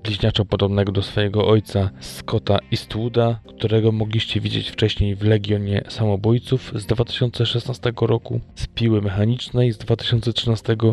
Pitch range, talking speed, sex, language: 105-115 Hz, 120 wpm, male, Polish